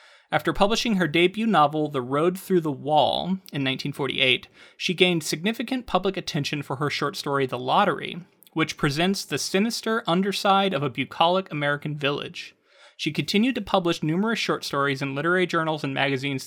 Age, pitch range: 30-49, 145-185 Hz